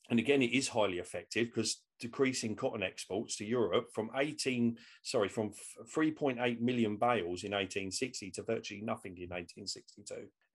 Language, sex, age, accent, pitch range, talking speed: English, male, 40-59, British, 105-140 Hz, 150 wpm